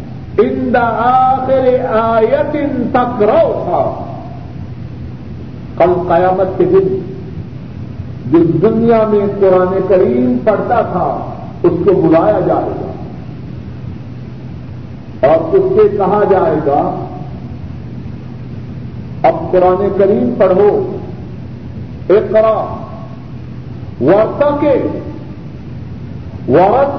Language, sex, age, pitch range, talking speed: Urdu, male, 50-69, 170-280 Hz, 75 wpm